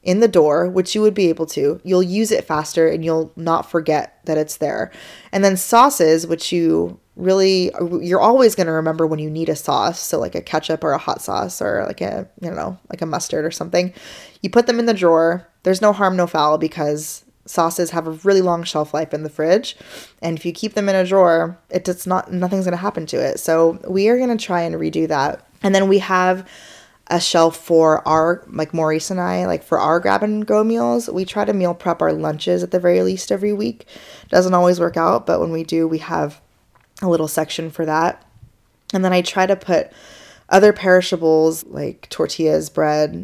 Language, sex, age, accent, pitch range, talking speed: English, female, 20-39, American, 155-190 Hz, 220 wpm